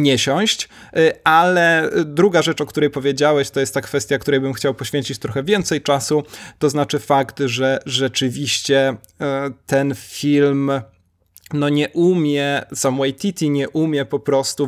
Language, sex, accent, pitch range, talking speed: Polish, male, native, 135-155 Hz, 145 wpm